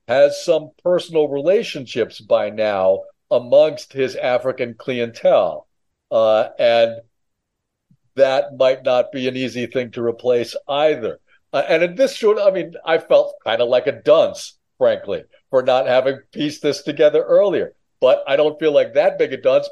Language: English